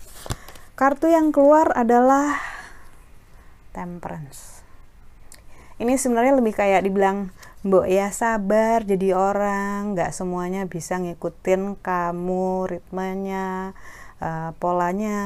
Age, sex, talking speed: 30-49, female, 85 wpm